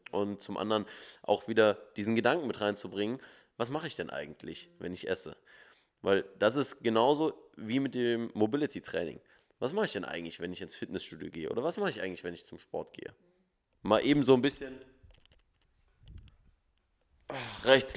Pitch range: 100-120 Hz